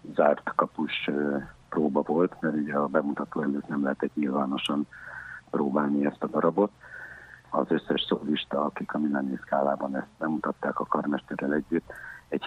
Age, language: 60-79, Hungarian